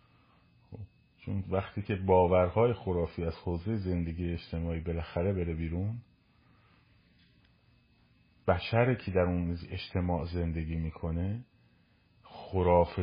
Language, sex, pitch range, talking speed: Persian, male, 80-95 Hz, 90 wpm